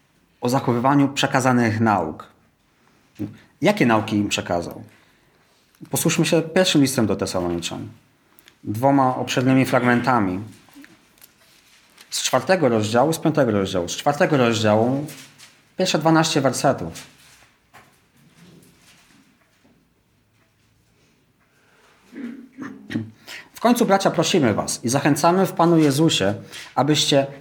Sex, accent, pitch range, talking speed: male, native, 120-160 Hz, 90 wpm